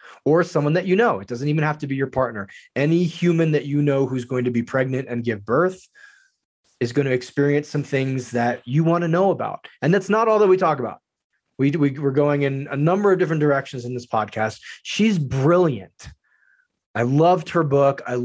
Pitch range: 135-165 Hz